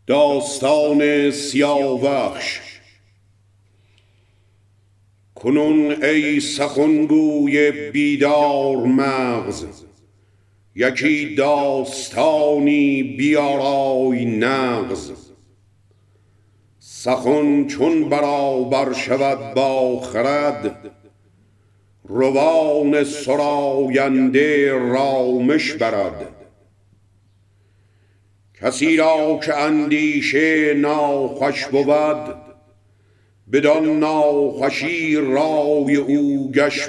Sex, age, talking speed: male, 50-69, 50 wpm